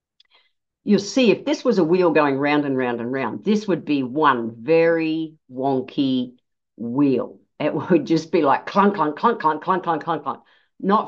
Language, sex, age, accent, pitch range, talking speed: English, female, 50-69, Australian, 145-175 Hz, 185 wpm